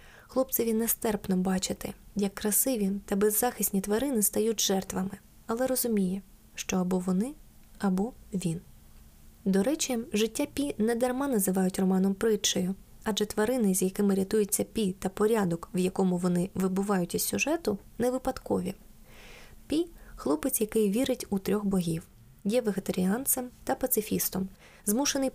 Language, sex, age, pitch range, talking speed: Ukrainian, female, 20-39, 190-235 Hz, 130 wpm